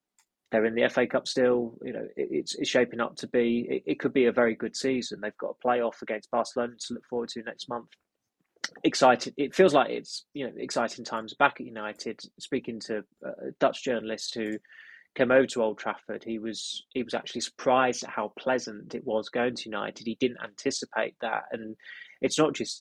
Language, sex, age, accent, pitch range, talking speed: English, male, 20-39, British, 110-130 Hz, 205 wpm